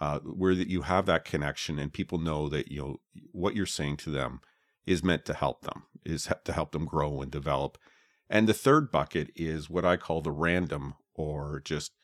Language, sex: English, male